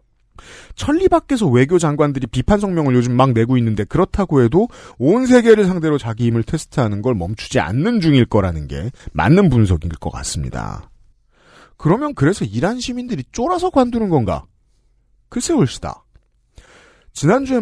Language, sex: Korean, male